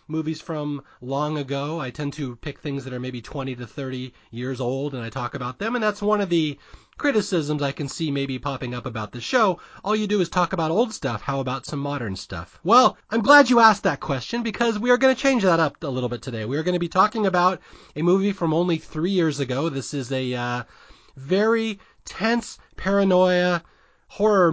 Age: 30-49